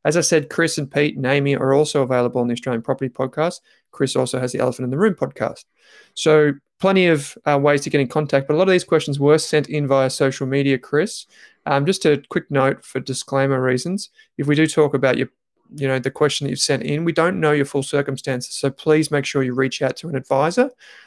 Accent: Australian